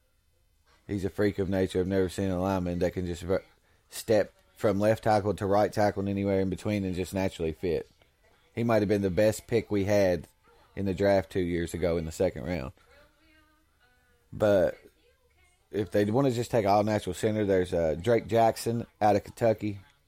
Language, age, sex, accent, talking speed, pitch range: English, 20-39, male, American, 185 wpm, 95-105 Hz